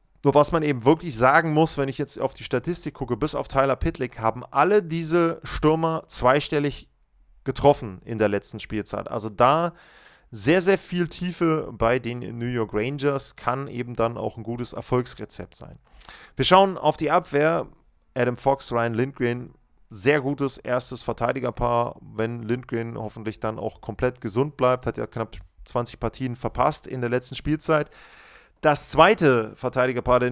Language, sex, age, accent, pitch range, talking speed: German, male, 30-49, German, 120-150 Hz, 165 wpm